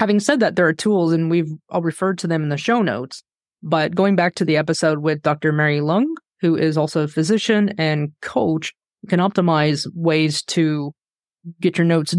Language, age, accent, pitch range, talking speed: English, 20-39, American, 160-190 Hz, 195 wpm